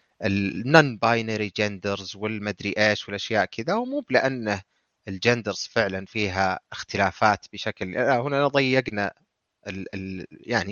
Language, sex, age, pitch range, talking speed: Arabic, male, 30-49, 100-120 Hz, 105 wpm